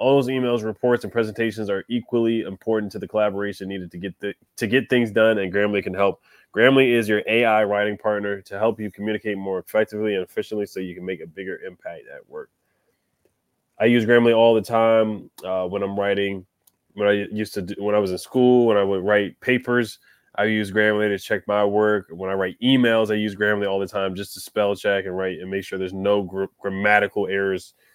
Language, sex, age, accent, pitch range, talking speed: English, male, 20-39, American, 100-115 Hz, 220 wpm